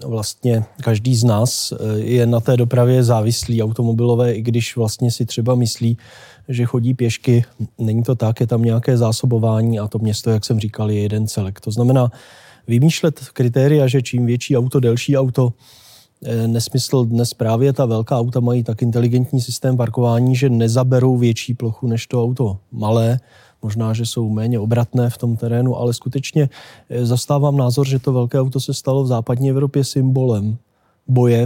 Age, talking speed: 20-39, 165 wpm